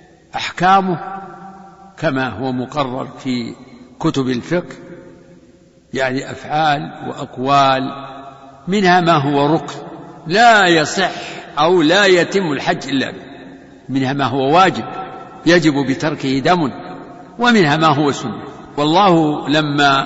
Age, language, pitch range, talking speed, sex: 60-79, Arabic, 140-180 Hz, 100 wpm, male